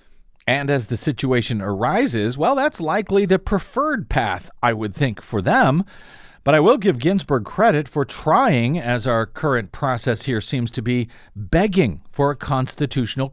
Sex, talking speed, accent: male, 160 wpm, American